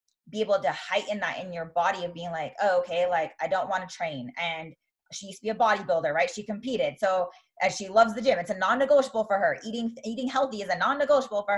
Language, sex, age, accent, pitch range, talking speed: English, female, 20-39, American, 175-215 Hz, 245 wpm